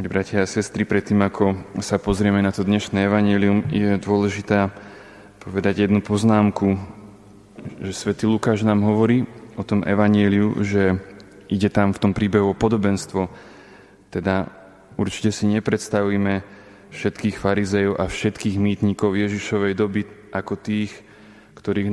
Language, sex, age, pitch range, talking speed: Slovak, male, 20-39, 100-105 Hz, 125 wpm